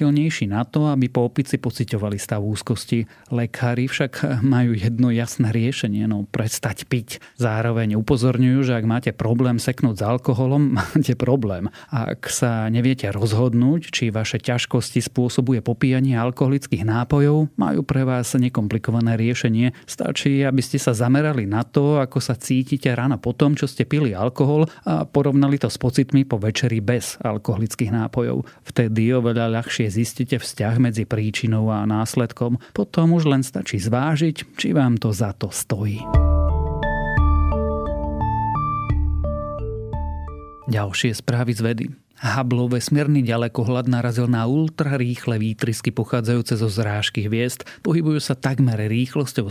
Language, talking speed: Slovak, 135 wpm